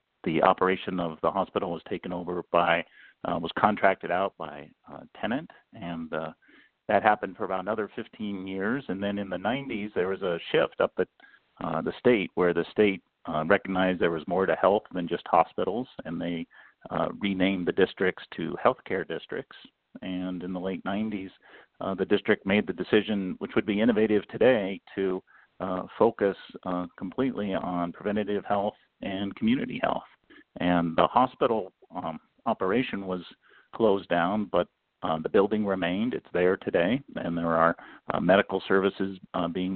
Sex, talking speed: male, 170 wpm